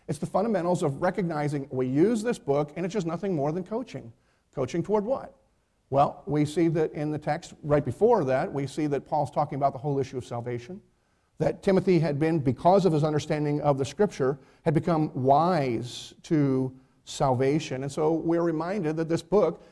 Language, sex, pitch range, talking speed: English, male, 140-185 Hz, 190 wpm